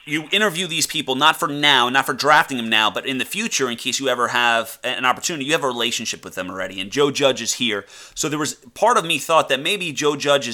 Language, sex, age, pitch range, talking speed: English, male, 30-49, 110-140 Hz, 260 wpm